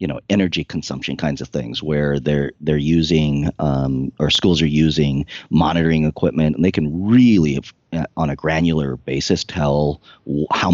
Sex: male